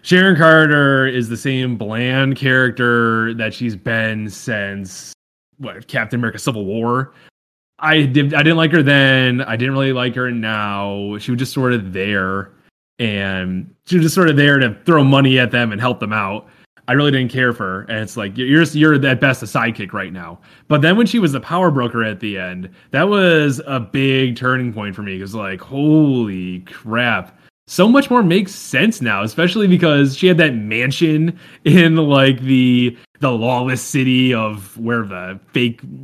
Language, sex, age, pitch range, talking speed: English, male, 20-39, 105-140 Hz, 190 wpm